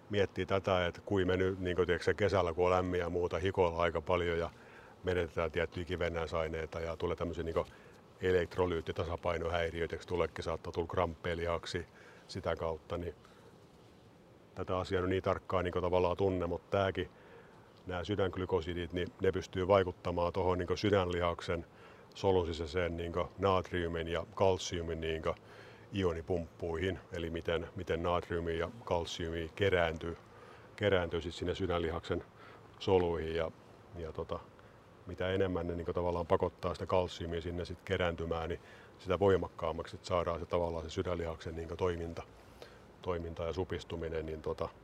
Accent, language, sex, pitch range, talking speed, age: native, Finnish, male, 85-95 Hz, 120 wpm, 50-69